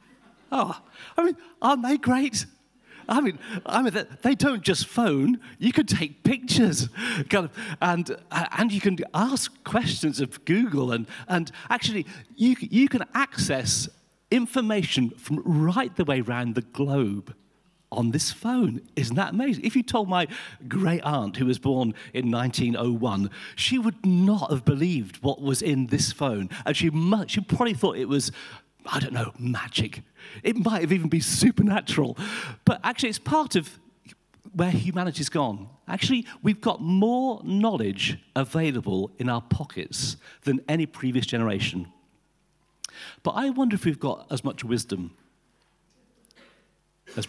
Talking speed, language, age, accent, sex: 150 wpm, English, 40-59, British, male